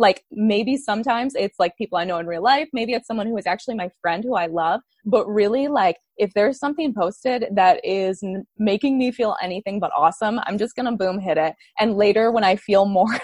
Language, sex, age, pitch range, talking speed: English, female, 20-39, 190-235 Hz, 225 wpm